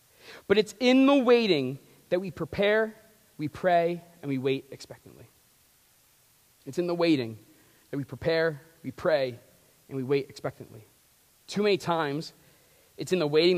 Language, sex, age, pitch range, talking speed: English, male, 30-49, 135-175 Hz, 150 wpm